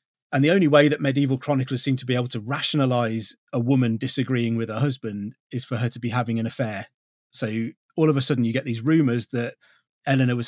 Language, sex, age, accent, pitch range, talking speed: English, male, 30-49, British, 115-140 Hz, 225 wpm